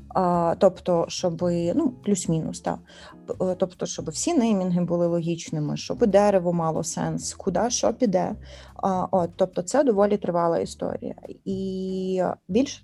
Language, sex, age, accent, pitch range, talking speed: Russian, female, 20-39, native, 180-210 Hz, 135 wpm